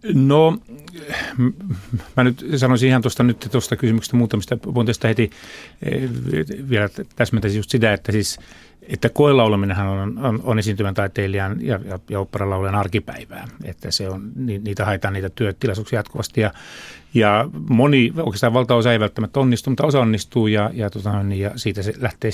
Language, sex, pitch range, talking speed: Finnish, male, 105-130 Hz, 155 wpm